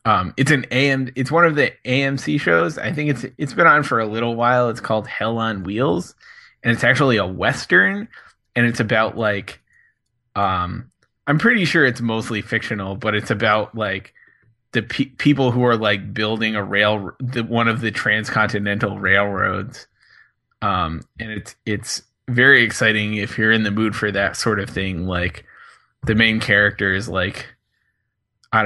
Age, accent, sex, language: 20-39, American, male, English